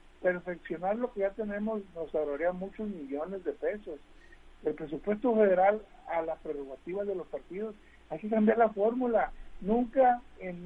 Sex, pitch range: male, 160-220 Hz